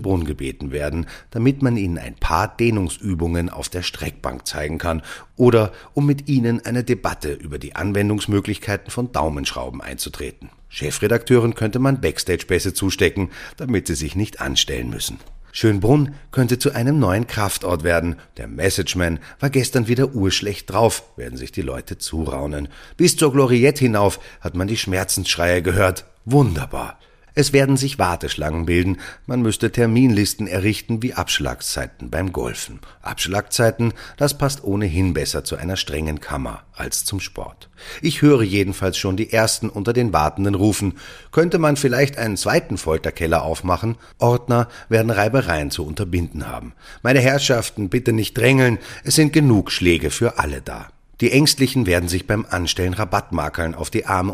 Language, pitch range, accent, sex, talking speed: German, 85-120 Hz, German, male, 150 wpm